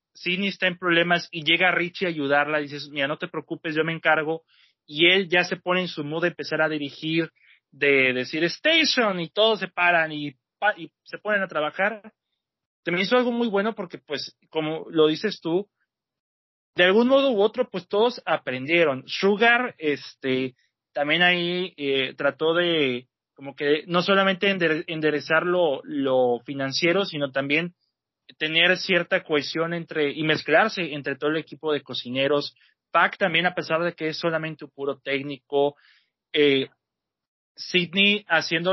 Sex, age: male, 30-49